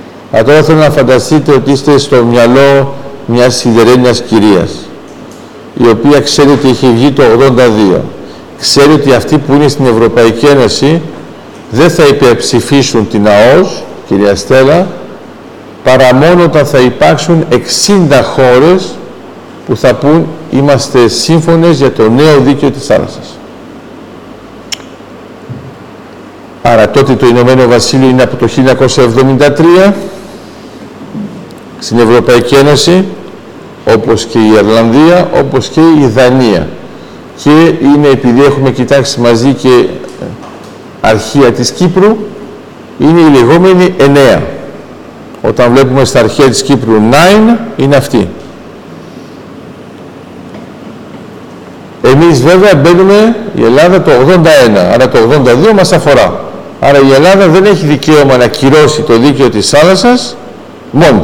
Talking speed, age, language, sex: 120 wpm, 50-69, Greek, male